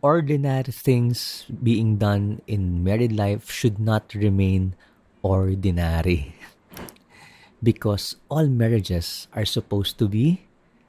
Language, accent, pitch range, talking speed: Filipino, native, 95-125 Hz, 100 wpm